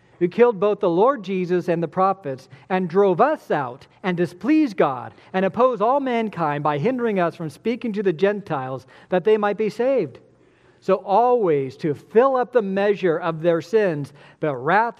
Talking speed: 180 wpm